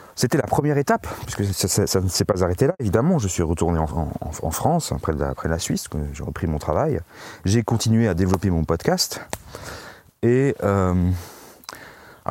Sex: male